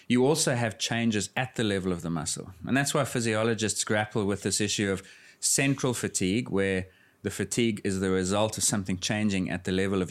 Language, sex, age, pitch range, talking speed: English, male, 30-49, 95-115 Hz, 200 wpm